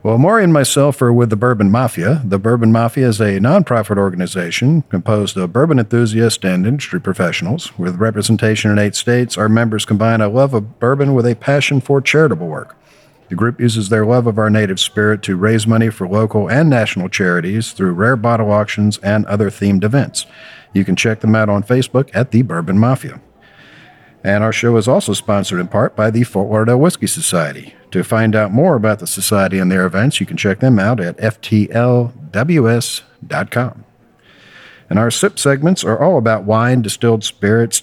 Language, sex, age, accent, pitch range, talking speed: English, male, 50-69, American, 105-125 Hz, 185 wpm